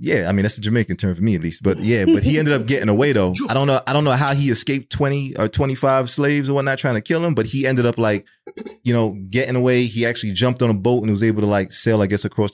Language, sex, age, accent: English, male, 20-39, American